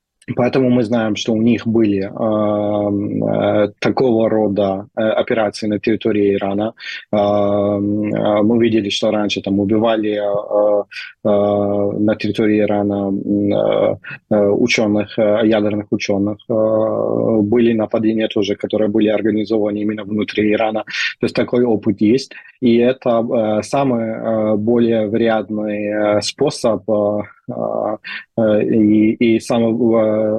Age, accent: 20-39, native